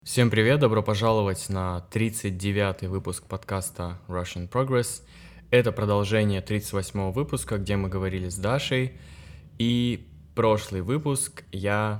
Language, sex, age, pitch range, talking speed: Russian, male, 20-39, 95-120 Hz, 125 wpm